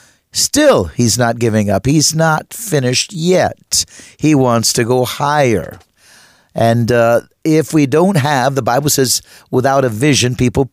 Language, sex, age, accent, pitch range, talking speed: English, male, 50-69, American, 125-160 Hz, 150 wpm